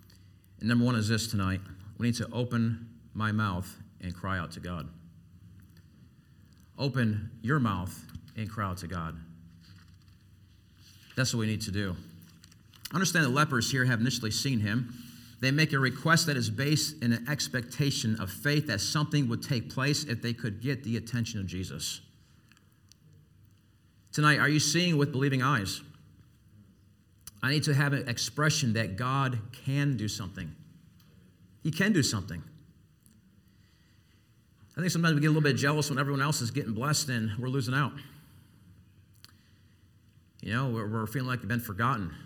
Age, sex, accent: 50-69, male, American